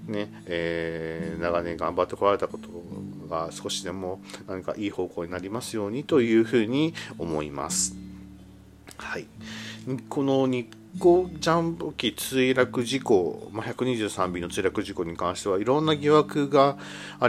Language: Japanese